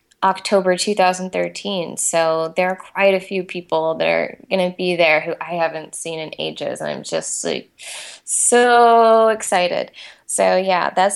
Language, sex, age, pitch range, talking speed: English, female, 10-29, 170-200 Hz, 155 wpm